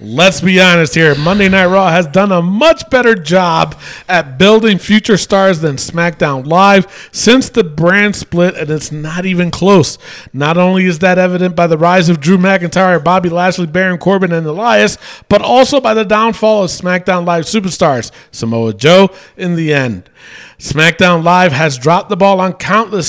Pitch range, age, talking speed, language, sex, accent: 160-210 Hz, 40-59, 175 wpm, English, male, American